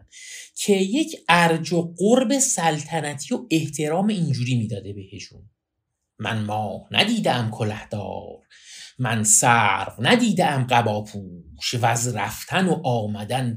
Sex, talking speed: male, 100 wpm